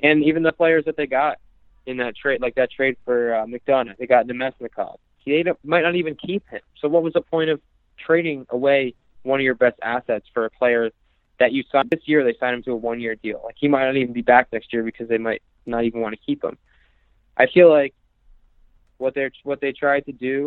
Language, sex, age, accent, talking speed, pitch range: English, male, 20-39, American, 235 wpm, 115-135 Hz